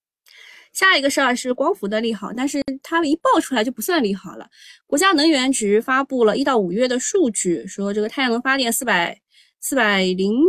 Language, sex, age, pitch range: Chinese, female, 20-39, 205-290 Hz